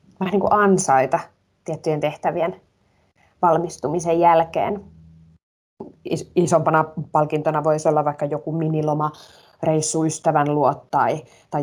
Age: 20-39